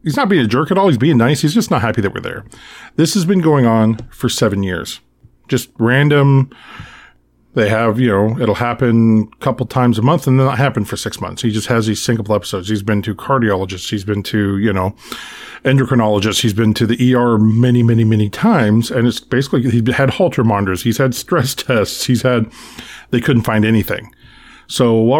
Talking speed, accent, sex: 210 wpm, American, male